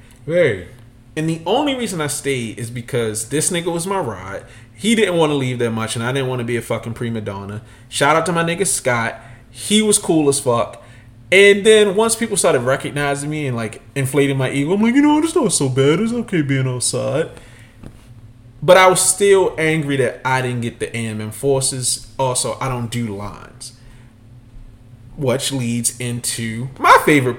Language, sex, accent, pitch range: English, male, American, 115-150 Hz